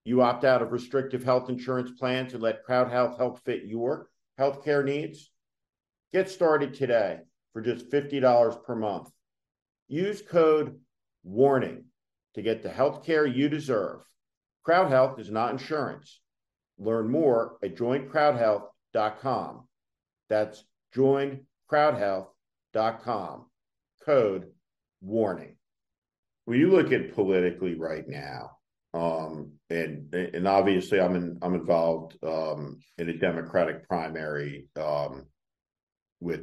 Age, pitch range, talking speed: 50-69, 85-130 Hz, 115 wpm